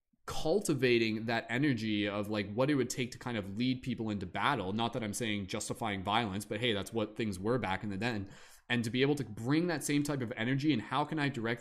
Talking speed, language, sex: 250 wpm, English, male